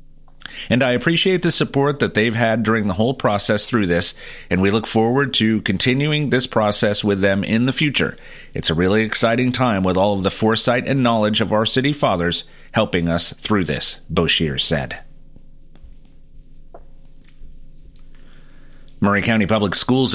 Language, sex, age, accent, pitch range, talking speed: English, male, 40-59, American, 100-125 Hz, 160 wpm